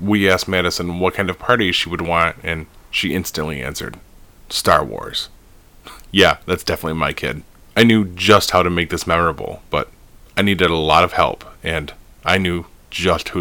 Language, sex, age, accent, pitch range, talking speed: English, male, 30-49, American, 80-95 Hz, 185 wpm